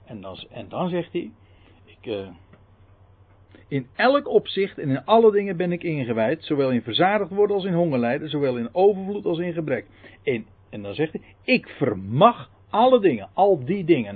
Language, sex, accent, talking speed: Dutch, male, Dutch, 165 wpm